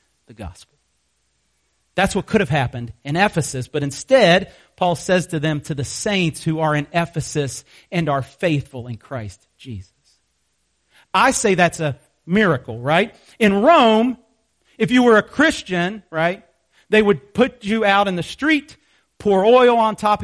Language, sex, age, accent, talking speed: English, male, 40-59, American, 160 wpm